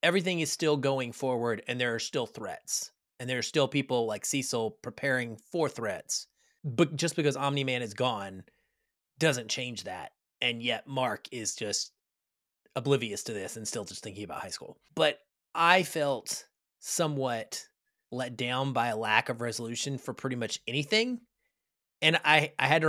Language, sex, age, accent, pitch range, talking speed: English, male, 30-49, American, 115-150 Hz, 170 wpm